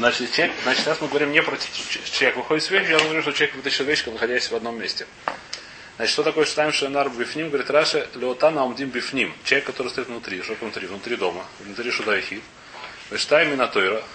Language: Russian